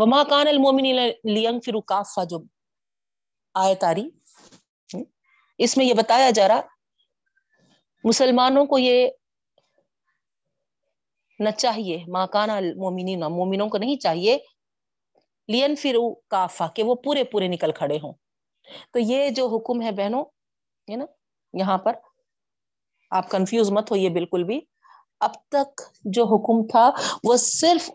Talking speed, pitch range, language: 120 wpm, 190-260 Hz, Urdu